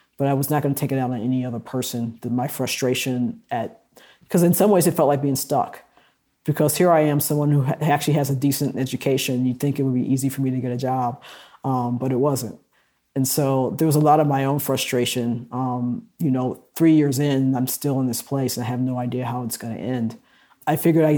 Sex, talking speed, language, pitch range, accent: male, 240 wpm, English, 130-150 Hz, American